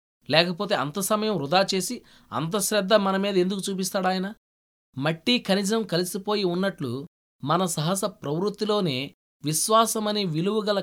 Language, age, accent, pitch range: Telugu, 20-39, native, 145-200 Hz